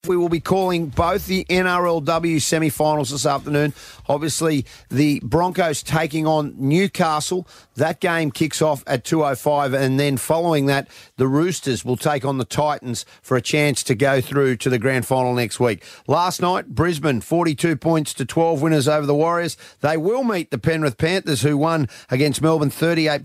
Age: 40-59